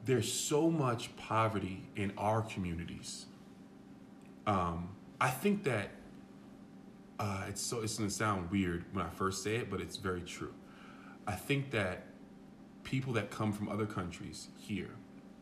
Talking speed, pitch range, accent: 145 wpm, 95-110 Hz, American